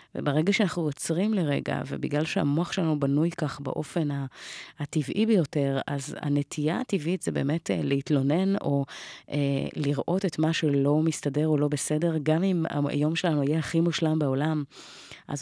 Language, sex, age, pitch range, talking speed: Hebrew, female, 30-49, 140-165 Hz, 145 wpm